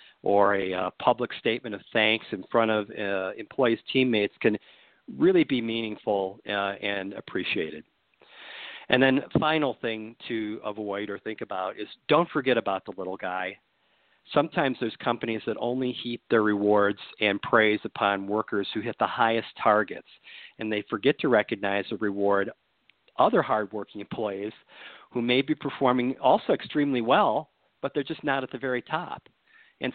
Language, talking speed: English, 160 wpm